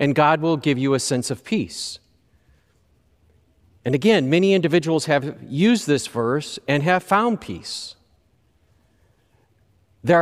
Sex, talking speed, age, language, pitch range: male, 130 wpm, 40-59, English, 115-170 Hz